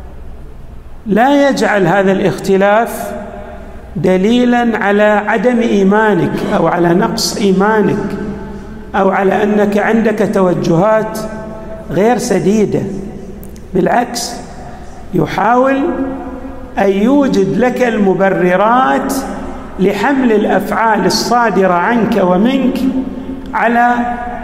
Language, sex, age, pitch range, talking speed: Arabic, male, 50-69, 190-245 Hz, 75 wpm